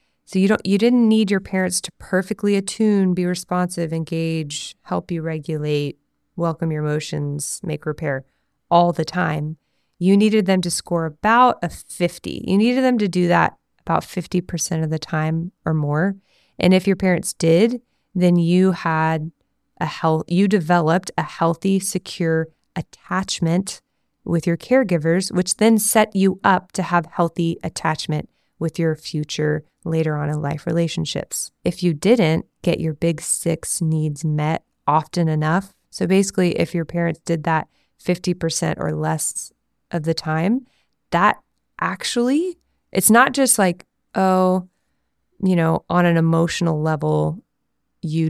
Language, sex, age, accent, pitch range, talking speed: English, female, 20-39, American, 160-190 Hz, 150 wpm